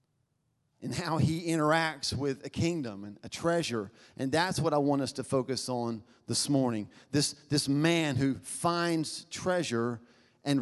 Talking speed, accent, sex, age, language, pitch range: 160 wpm, American, male, 40-59, English, 125-165 Hz